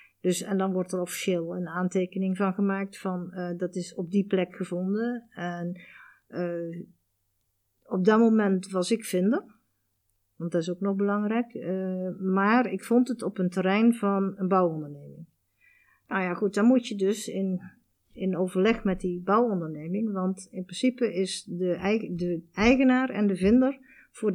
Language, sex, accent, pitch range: Dutch, female, Dutch, 175-205 Hz